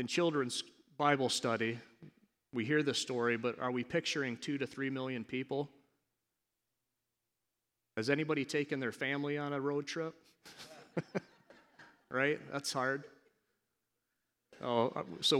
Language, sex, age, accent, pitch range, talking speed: English, male, 40-59, American, 115-145 Hz, 115 wpm